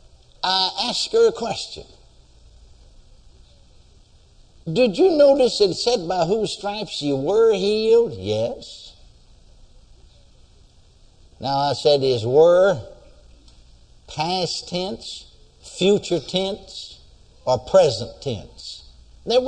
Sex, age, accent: male, 60-79, American